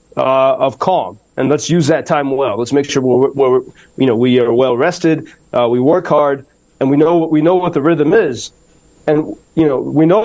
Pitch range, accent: 135-160 Hz, American